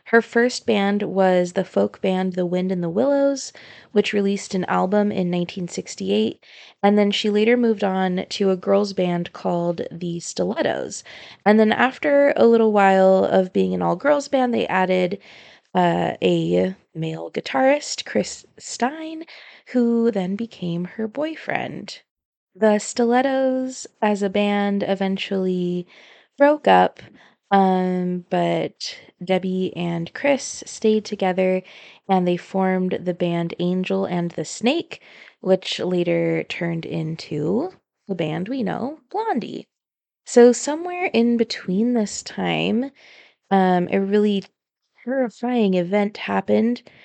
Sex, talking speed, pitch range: female, 130 wpm, 180-230 Hz